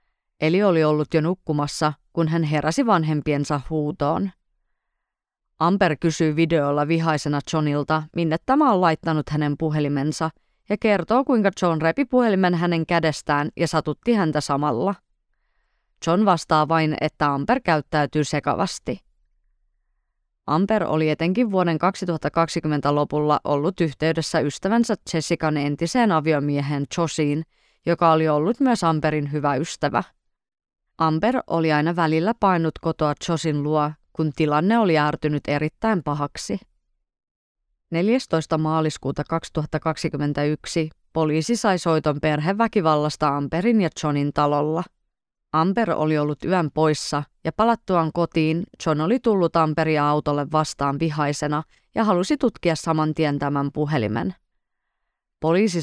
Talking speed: 115 wpm